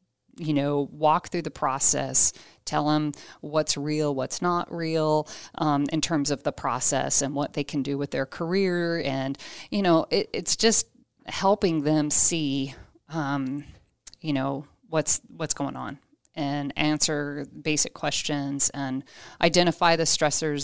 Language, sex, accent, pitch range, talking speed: English, female, American, 140-170 Hz, 150 wpm